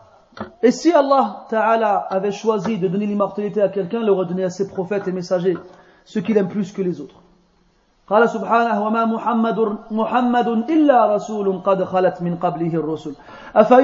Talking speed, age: 125 wpm, 40-59